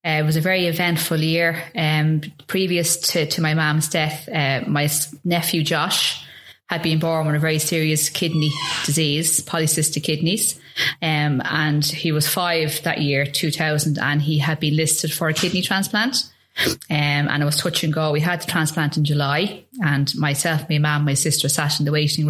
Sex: female